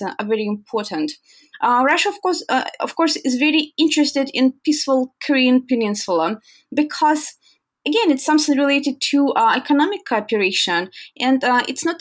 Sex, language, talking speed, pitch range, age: female, English, 150 wpm, 220-295 Hz, 20-39